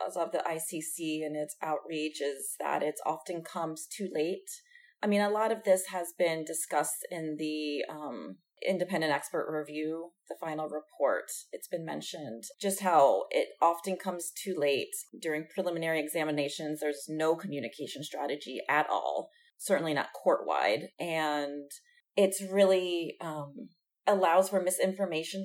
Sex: female